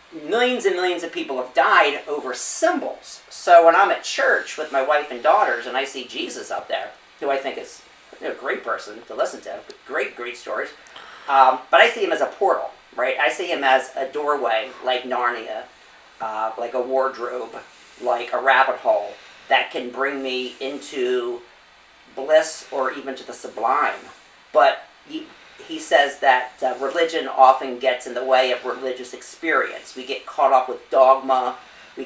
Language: English